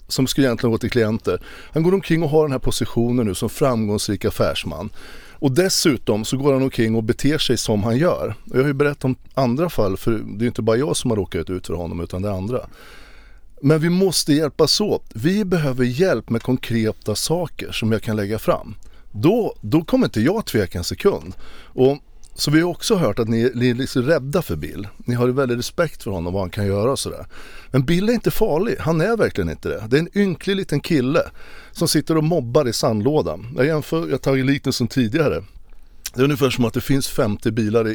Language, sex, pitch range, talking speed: Swedish, male, 115-155 Hz, 225 wpm